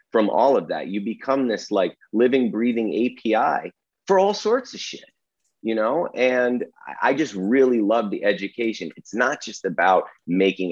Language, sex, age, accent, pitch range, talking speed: English, male, 30-49, American, 110-150 Hz, 170 wpm